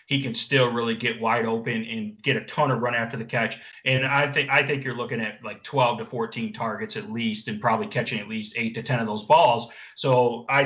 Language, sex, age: English, male, 30-49